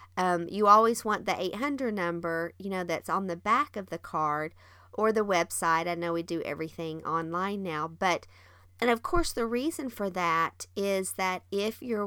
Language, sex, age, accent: English, female, 40-59, American